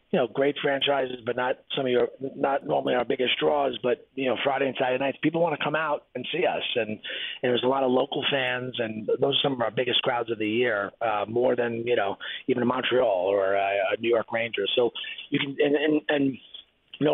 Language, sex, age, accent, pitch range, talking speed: English, male, 30-49, American, 120-150 Hz, 245 wpm